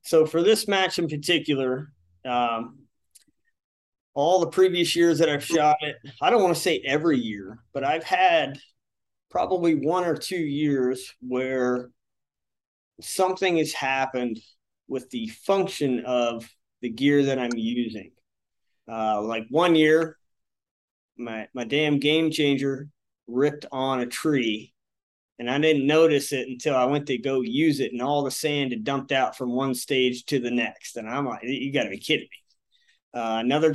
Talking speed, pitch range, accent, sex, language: 165 wpm, 125-160 Hz, American, male, English